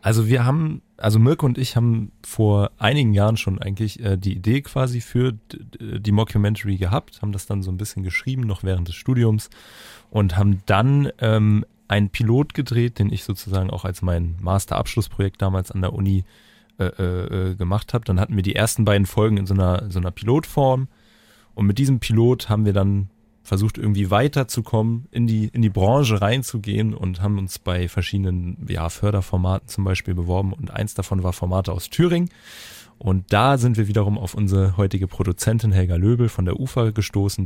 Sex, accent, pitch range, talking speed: male, German, 95-110 Hz, 185 wpm